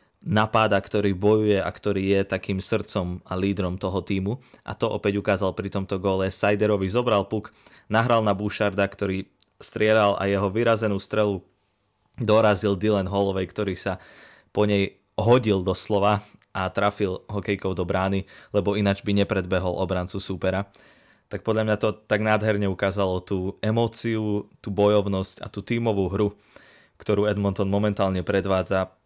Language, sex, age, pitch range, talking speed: Slovak, male, 20-39, 95-105 Hz, 145 wpm